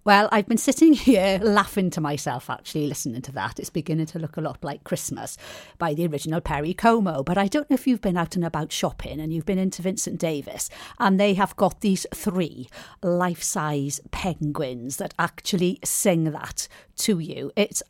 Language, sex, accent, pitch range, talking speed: English, female, British, 155-200 Hz, 190 wpm